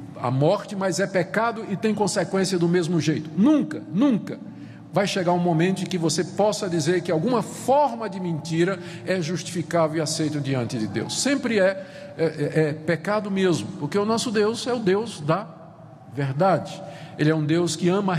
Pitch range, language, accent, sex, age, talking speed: 165-220 Hz, Portuguese, Brazilian, male, 50-69, 180 wpm